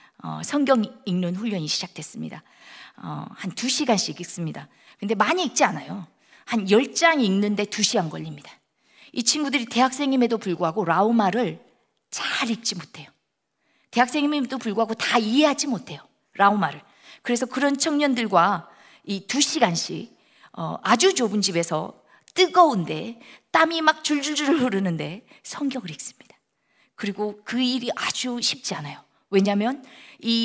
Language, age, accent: Korean, 50-69, native